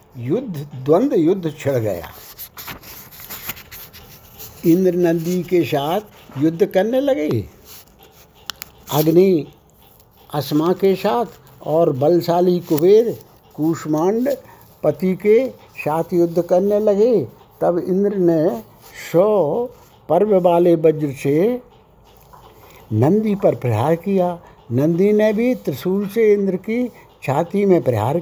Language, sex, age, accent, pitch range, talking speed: Hindi, male, 60-79, native, 150-200 Hz, 100 wpm